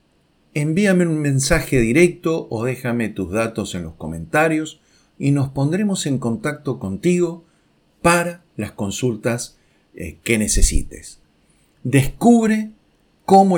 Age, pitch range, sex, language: 50-69, 100-145 Hz, male, Spanish